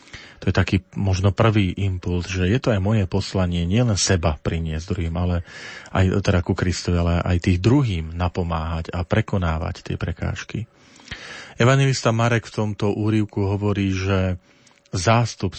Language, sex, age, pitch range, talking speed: Slovak, male, 40-59, 90-105 Hz, 145 wpm